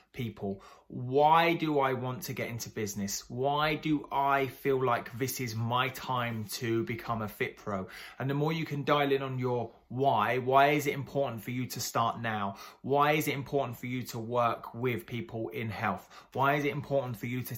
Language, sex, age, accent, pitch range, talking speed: English, male, 20-39, British, 115-145 Hz, 210 wpm